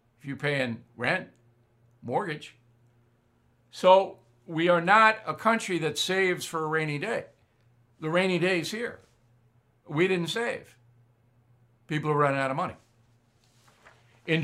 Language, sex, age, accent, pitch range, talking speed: English, male, 60-79, American, 120-200 Hz, 130 wpm